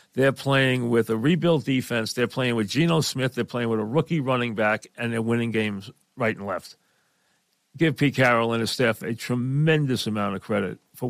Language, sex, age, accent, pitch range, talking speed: English, male, 50-69, American, 115-150 Hz, 200 wpm